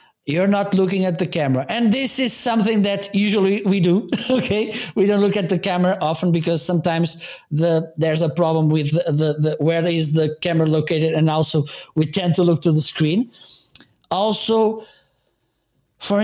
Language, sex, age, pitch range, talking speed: English, male, 50-69, 165-210 Hz, 175 wpm